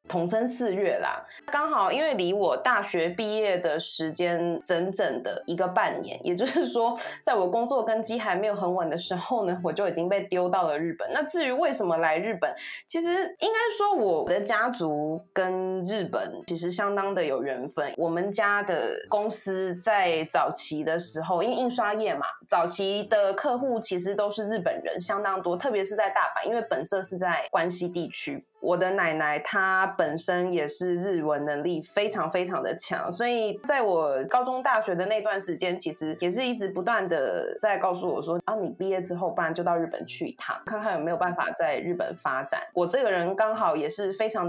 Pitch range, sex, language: 175-225 Hz, female, Chinese